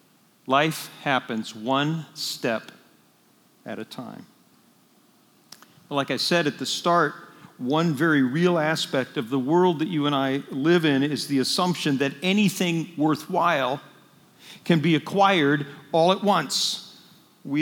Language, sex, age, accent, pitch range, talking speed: English, male, 50-69, American, 145-180 Hz, 135 wpm